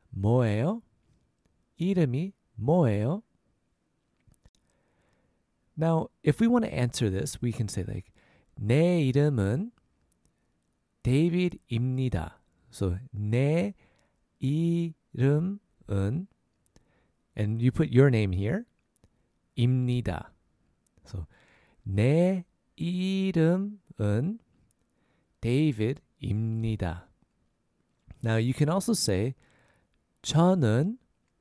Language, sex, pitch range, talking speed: English, male, 105-155 Hz, 70 wpm